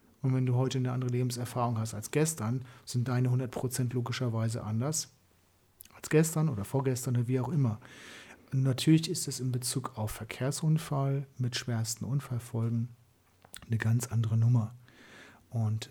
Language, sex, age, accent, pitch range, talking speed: German, male, 40-59, German, 115-135 Hz, 140 wpm